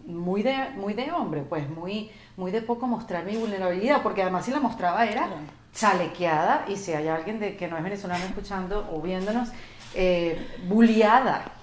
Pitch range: 160-220 Hz